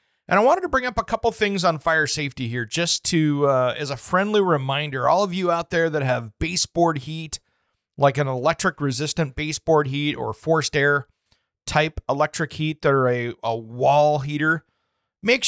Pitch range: 140-175 Hz